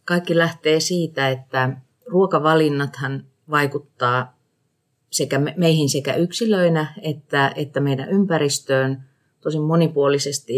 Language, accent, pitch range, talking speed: Finnish, native, 135-155 Hz, 85 wpm